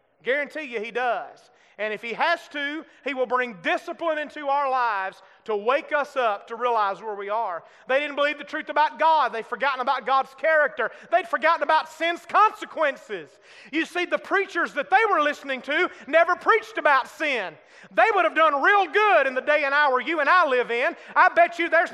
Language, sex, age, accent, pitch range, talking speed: English, male, 30-49, American, 275-360 Hz, 205 wpm